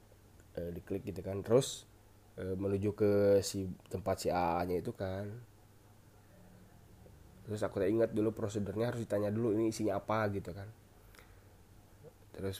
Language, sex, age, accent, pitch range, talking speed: Indonesian, male, 20-39, native, 100-130 Hz, 135 wpm